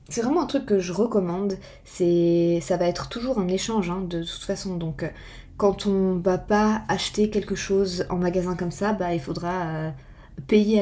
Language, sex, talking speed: French, female, 195 wpm